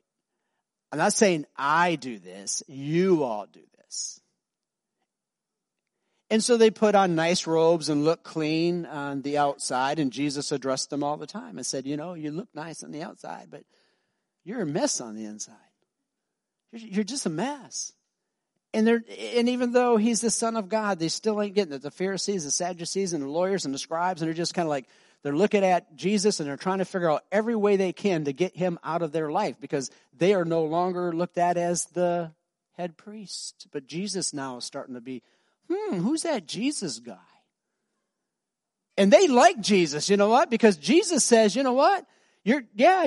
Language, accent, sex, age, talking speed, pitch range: English, American, male, 50-69, 195 wpm, 160-225 Hz